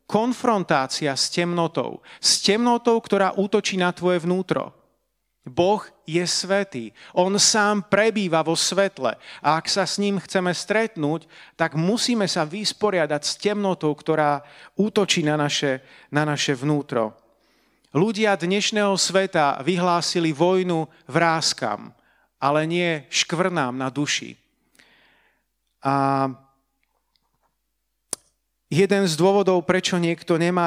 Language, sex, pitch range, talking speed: Slovak, male, 140-190 Hz, 110 wpm